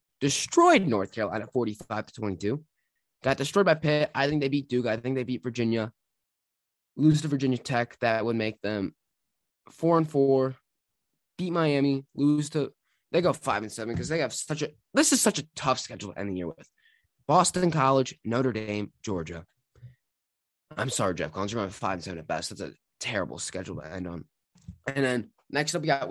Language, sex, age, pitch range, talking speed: English, male, 20-39, 115-175 Hz, 195 wpm